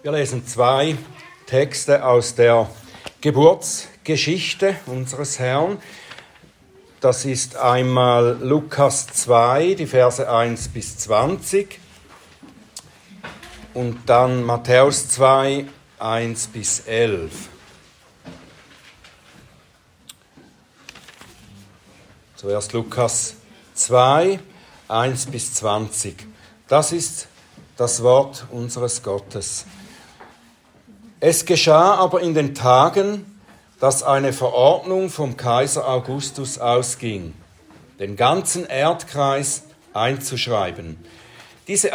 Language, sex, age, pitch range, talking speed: German, male, 60-79, 120-150 Hz, 80 wpm